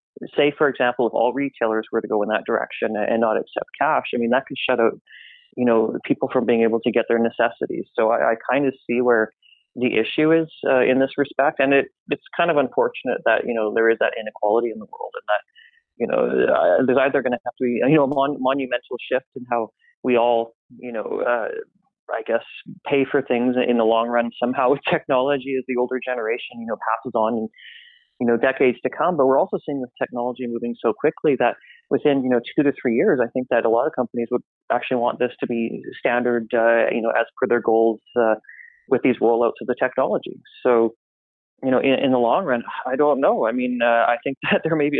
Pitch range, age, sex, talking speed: 115-140 Hz, 30-49, male, 235 wpm